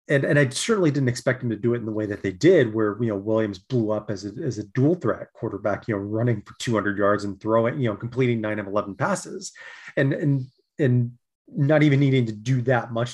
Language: English